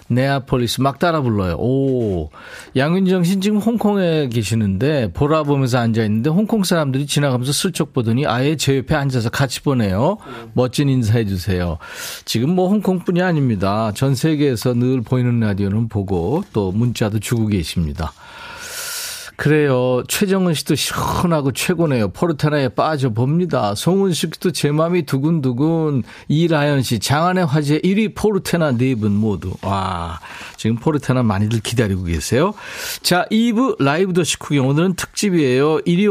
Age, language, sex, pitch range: 40-59, Korean, male, 115-175 Hz